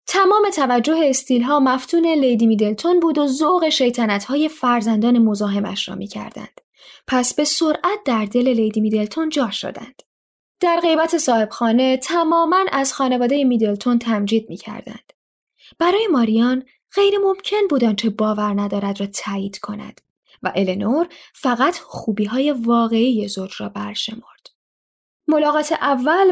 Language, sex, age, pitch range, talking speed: Persian, female, 10-29, 215-300 Hz, 120 wpm